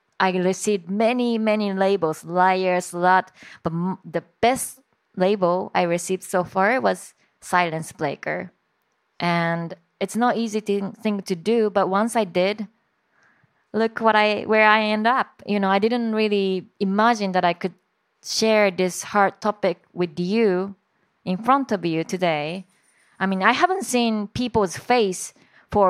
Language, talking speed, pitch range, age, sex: Slovak, 150 wpm, 185-225 Hz, 20-39, female